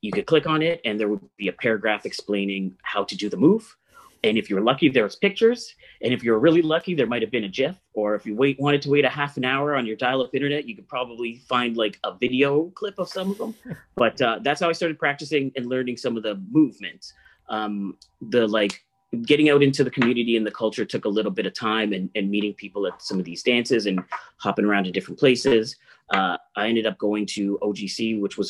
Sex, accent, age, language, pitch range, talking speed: male, American, 30-49, English, 100-130 Hz, 245 wpm